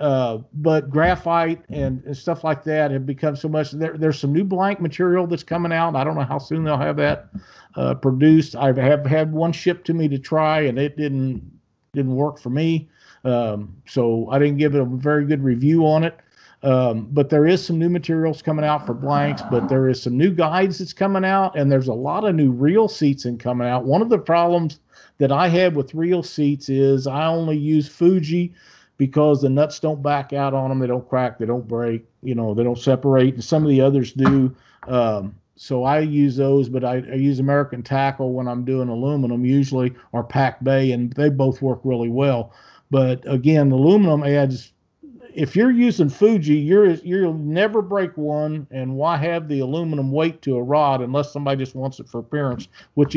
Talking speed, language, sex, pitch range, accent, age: 210 wpm, English, male, 130-155 Hz, American, 50-69